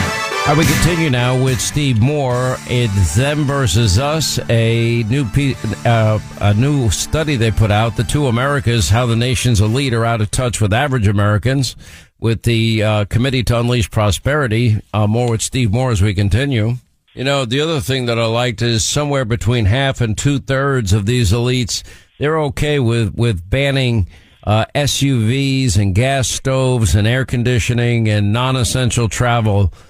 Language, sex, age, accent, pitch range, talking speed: English, male, 50-69, American, 110-135 Hz, 165 wpm